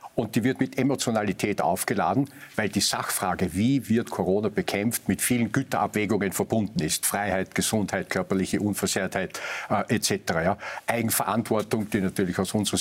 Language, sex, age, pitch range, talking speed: German, male, 50-69, 105-140 Hz, 140 wpm